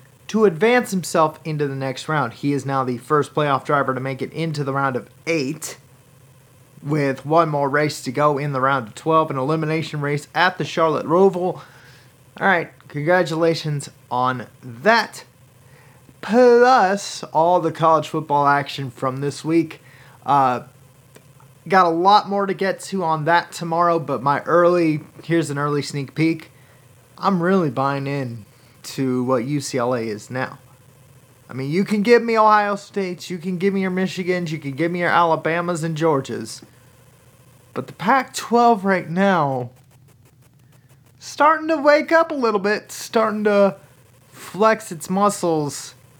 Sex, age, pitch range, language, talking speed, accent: male, 30-49, 130-180 Hz, English, 155 wpm, American